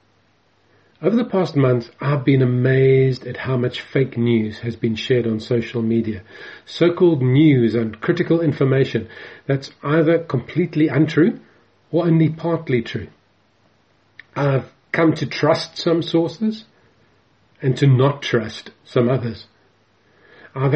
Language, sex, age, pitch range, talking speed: English, male, 40-59, 115-155 Hz, 125 wpm